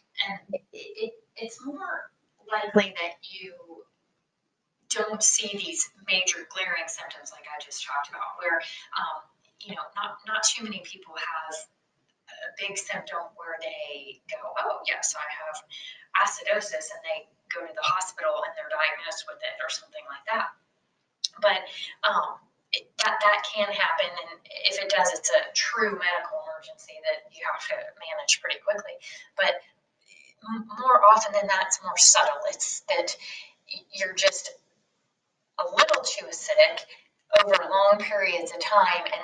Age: 20-39